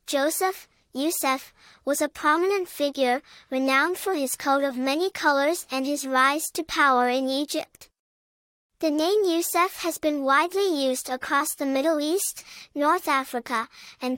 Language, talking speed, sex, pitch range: English, 145 wpm, male, 270-335 Hz